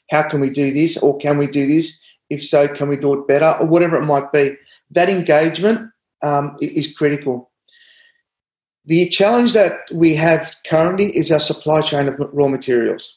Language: English